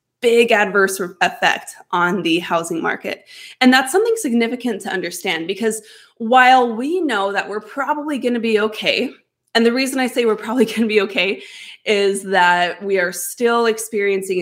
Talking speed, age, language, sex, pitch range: 170 wpm, 20-39, English, female, 195-250 Hz